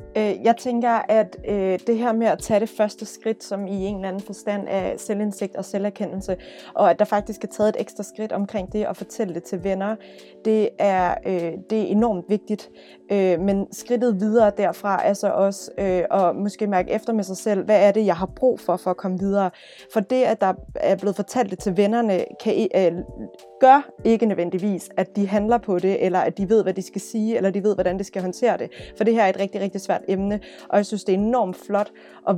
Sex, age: female, 20-39